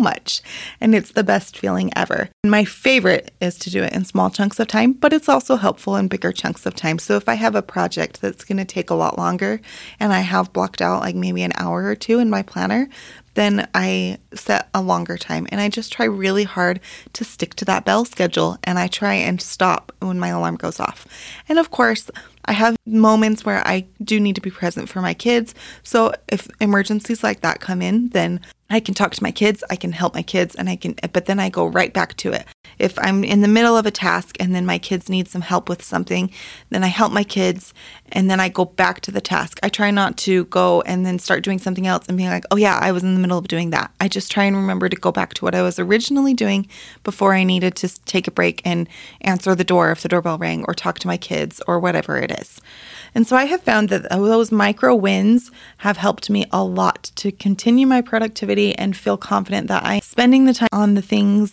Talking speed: 245 wpm